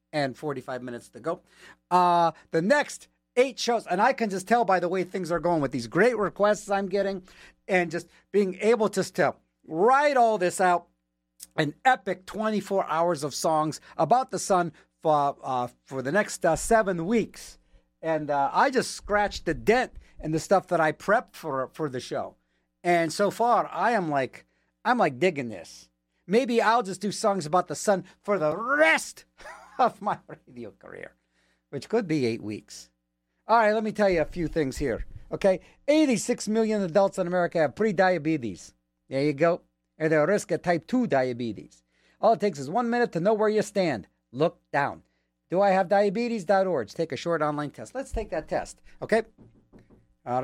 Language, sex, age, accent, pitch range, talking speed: English, male, 50-69, American, 130-205 Hz, 185 wpm